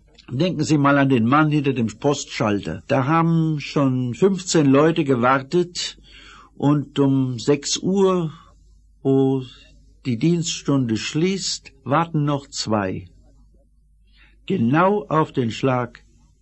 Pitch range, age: 120-160 Hz, 60-79